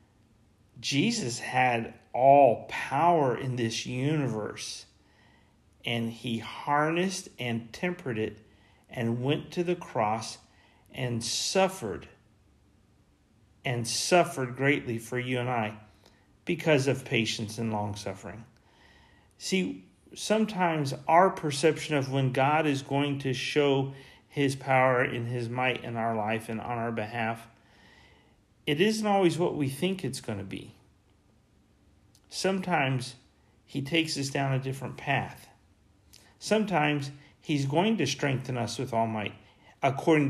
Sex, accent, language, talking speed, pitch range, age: male, American, English, 120 wpm, 110-145 Hz, 40-59